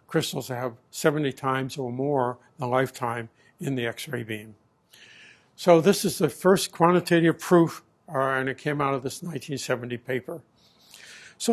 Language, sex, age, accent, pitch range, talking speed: English, male, 60-79, American, 135-160 Hz, 155 wpm